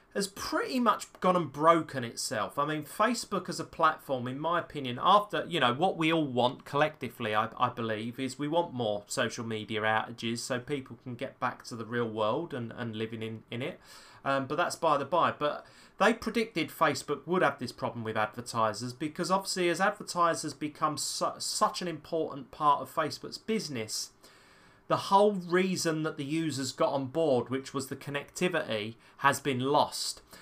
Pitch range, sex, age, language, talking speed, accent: 125-165 Hz, male, 30-49, English, 185 wpm, British